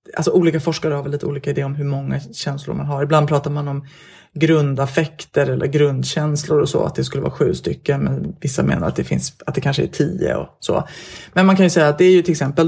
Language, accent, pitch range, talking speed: English, Swedish, 145-170 Hz, 250 wpm